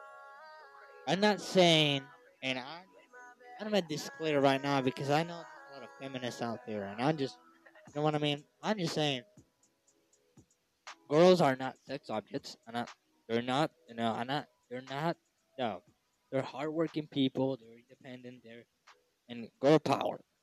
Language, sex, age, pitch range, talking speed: English, male, 20-39, 125-200 Hz, 170 wpm